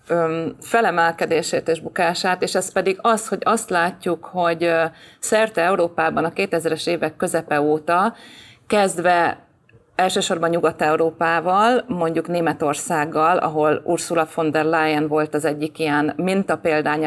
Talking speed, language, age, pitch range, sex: 115 wpm, Hungarian, 30-49, 155-190 Hz, female